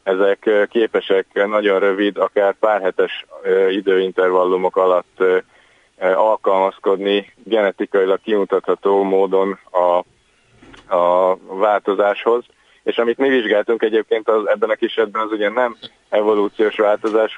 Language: Hungarian